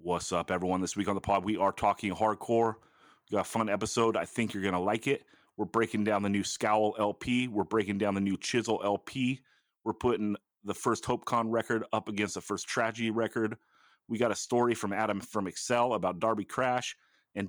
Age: 30-49